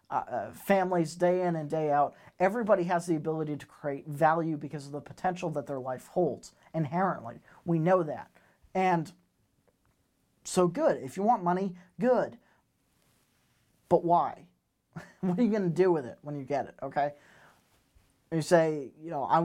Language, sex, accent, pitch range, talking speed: English, male, American, 135-175 Hz, 170 wpm